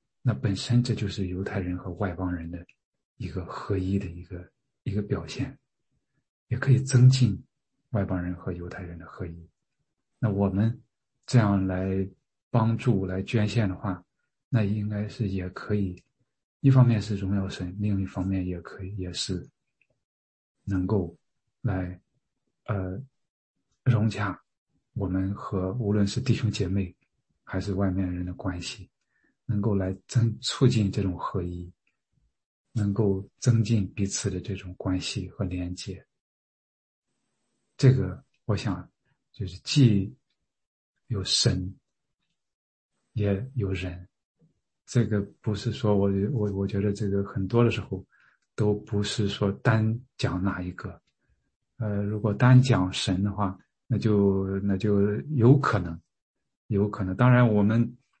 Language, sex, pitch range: English, male, 95-115 Hz